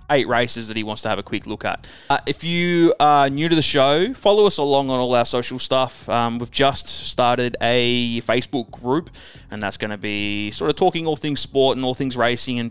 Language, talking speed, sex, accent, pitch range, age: English, 235 wpm, male, Australian, 105-135 Hz, 20-39